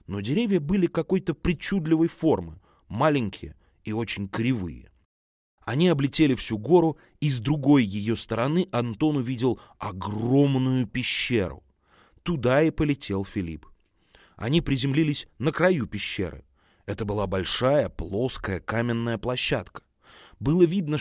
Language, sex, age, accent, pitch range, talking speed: Russian, male, 30-49, native, 100-155 Hz, 115 wpm